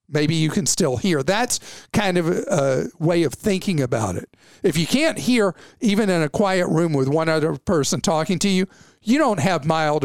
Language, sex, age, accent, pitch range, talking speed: English, male, 50-69, American, 145-185 Hz, 205 wpm